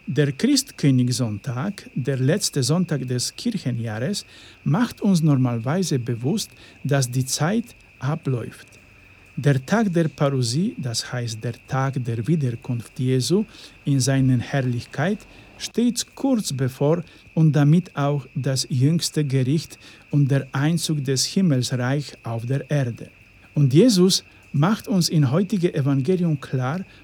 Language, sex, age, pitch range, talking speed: Polish, male, 50-69, 130-175 Hz, 120 wpm